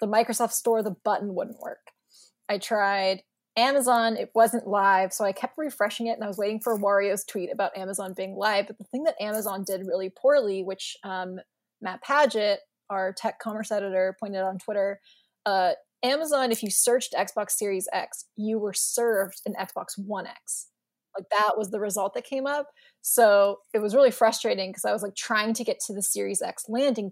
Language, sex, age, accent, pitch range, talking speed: English, female, 20-39, American, 195-230 Hz, 195 wpm